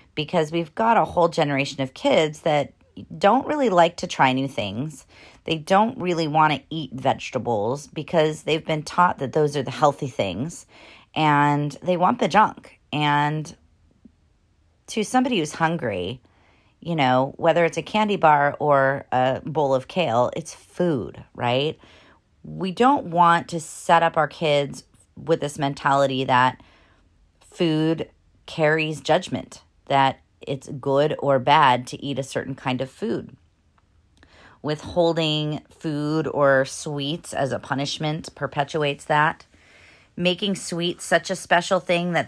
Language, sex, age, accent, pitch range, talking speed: English, female, 30-49, American, 125-160 Hz, 145 wpm